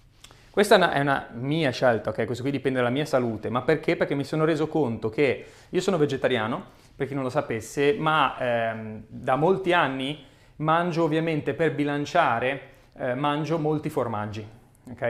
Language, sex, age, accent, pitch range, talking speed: Italian, male, 30-49, native, 120-150 Hz, 165 wpm